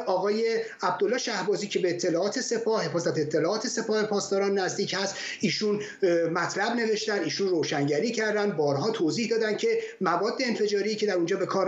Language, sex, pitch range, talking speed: Persian, male, 190-235 Hz, 155 wpm